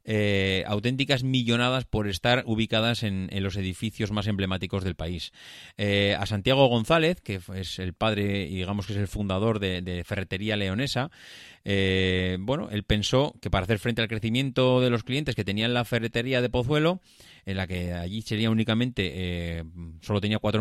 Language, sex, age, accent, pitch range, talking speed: Spanish, male, 30-49, Spanish, 100-125 Hz, 180 wpm